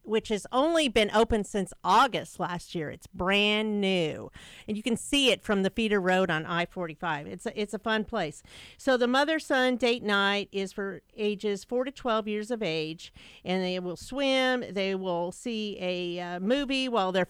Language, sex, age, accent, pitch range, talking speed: English, female, 50-69, American, 195-240 Hz, 185 wpm